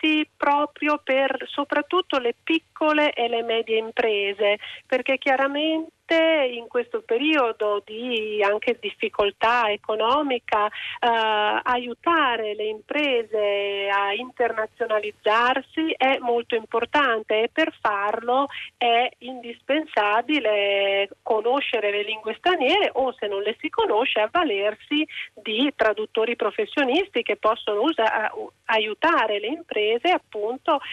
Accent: native